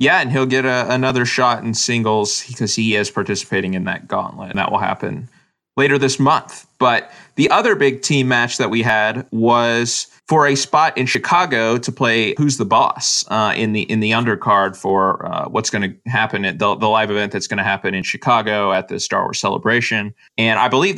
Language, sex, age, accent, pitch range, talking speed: English, male, 20-39, American, 100-125 Hz, 210 wpm